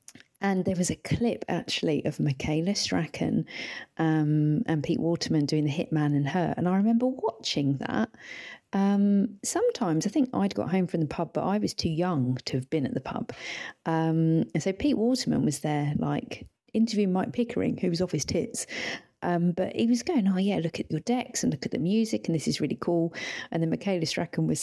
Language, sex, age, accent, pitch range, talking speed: English, female, 40-59, British, 155-210 Hz, 210 wpm